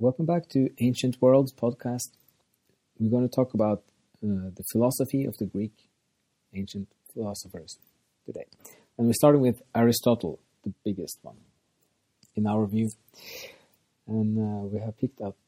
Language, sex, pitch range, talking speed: English, male, 105-130 Hz, 145 wpm